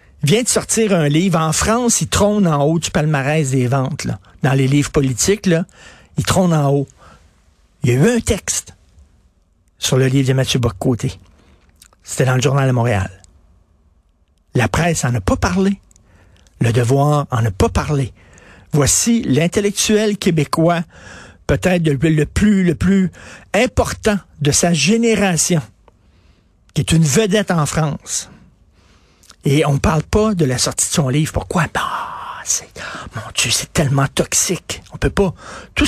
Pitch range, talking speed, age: 120-185 Hz, 160 wpm, 60-79